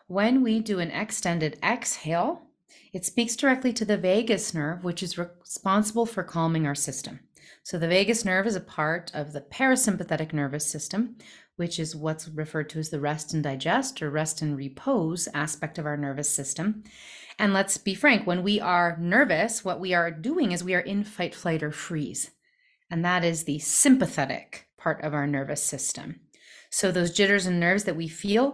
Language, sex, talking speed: English, female, 185 wpm